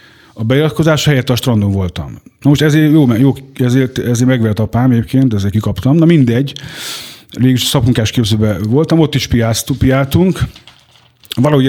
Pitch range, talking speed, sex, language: 110-140 Hz, 140 wpm, male, Hungarian